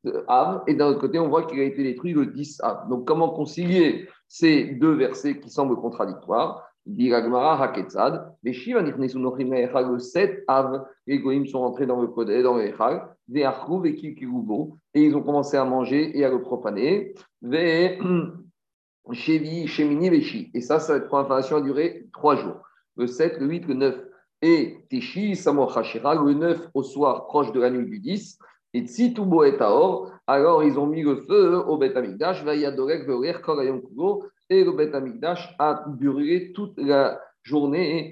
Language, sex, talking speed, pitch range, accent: French, male, 135 wpm, 135-200 Hz, French